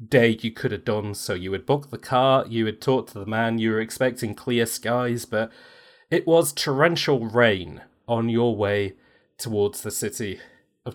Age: 30-49